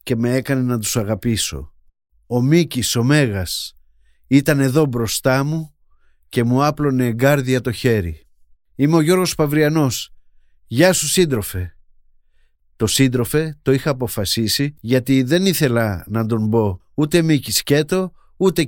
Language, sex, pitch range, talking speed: Greek, male, 100-145 Hz, 130 wpm